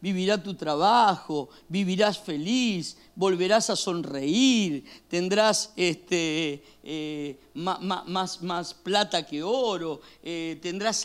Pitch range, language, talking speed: 155-225 Hz, Spanish, 110 wpm